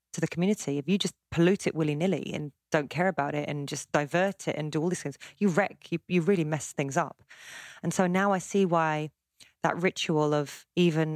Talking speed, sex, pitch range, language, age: 225 wpm, female, 150-180 Hz, English, 30-49